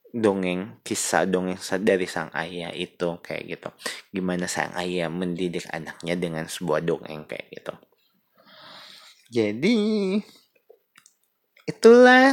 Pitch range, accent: 85-110 Hz, native